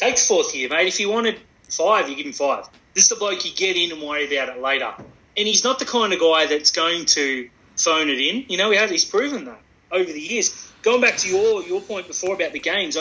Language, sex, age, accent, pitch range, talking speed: English, male, 30-49, Australian, 155-230 Hz, 270 wpm